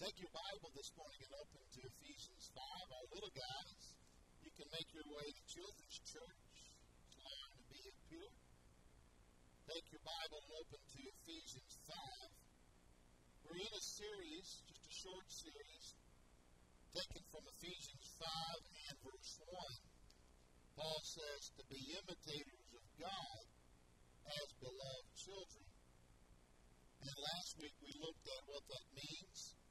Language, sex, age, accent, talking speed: English, male, 50-69, American, 135 wpm